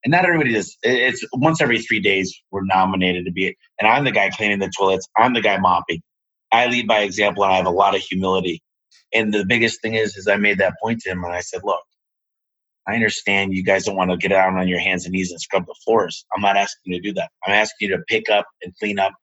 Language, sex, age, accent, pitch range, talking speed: English, male, 30-49, American, 95-125 Hz, 270 wpm